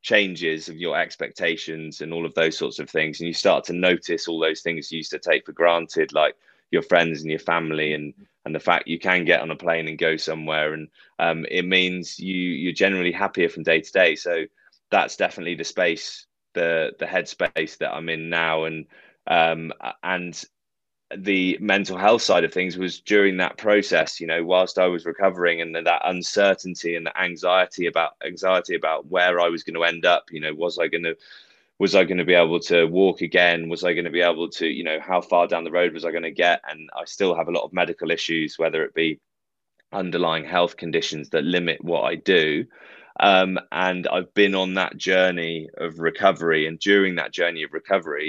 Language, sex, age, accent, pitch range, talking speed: English, male, 20-39, British, 80-95 Hz, 215 wpm